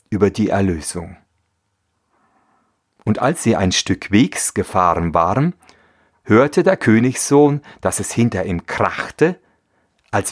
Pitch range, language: 90-110 Hz, German